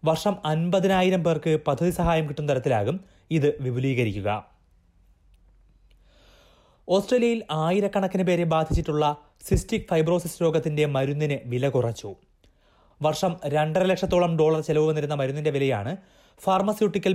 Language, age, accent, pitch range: Malayalam, 30-49, native, 130-175 Hz